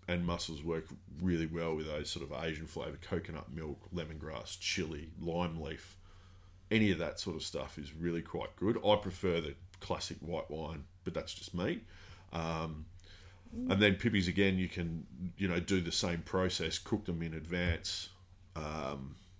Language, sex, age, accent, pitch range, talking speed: English, male, 30-49, Australian, 80-95 Hz, 170 wpm